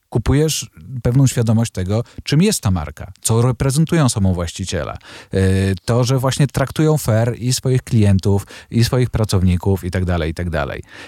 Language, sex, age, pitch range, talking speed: Polish, male, 40-59, 95-120 Hz, 135 wpm